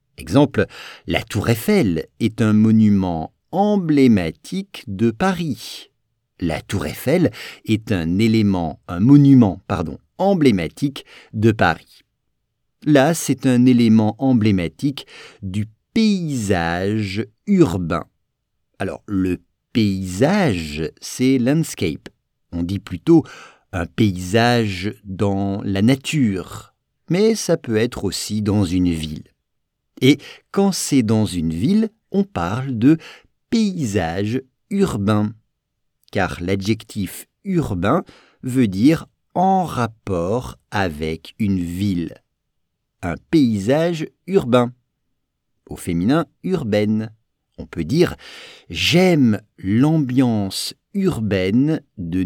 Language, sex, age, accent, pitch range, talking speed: English, male, 50-69, French, 100-145 Hz, 95 wpm